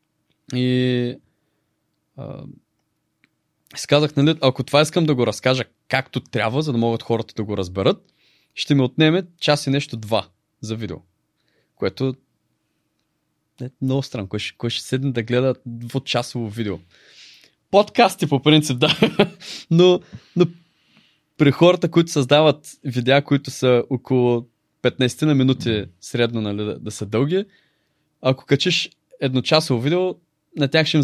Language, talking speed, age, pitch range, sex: Bulgarian, 140 wpm, 20-39, 120-155 Hz, male